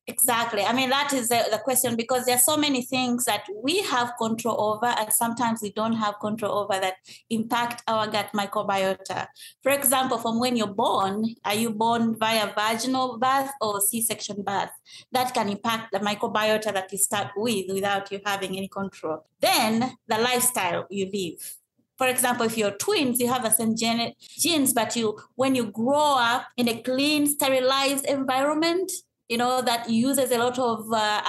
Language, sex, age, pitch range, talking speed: English, female, 30-49, 215-255 Hz, 180 wpm